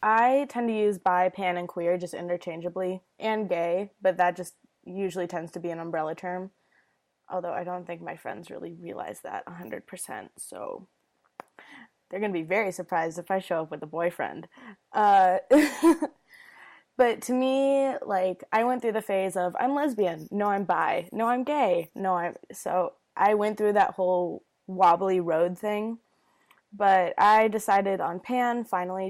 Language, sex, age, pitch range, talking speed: English, female, 20-39, 180-215 Hz, 170 wpm